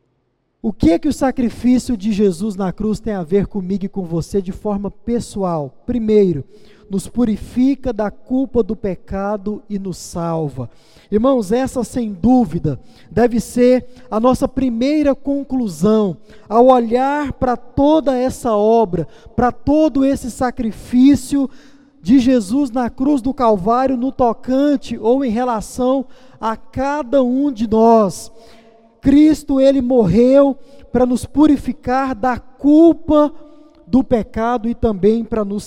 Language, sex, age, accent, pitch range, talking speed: Portuguese, male, 20-39, Brazilian, 215-265 Hz, 135 wpm